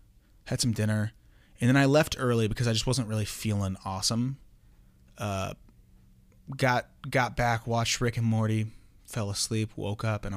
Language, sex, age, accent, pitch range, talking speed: English, male, 30-49, American, 105-125 Hz, 160 wpm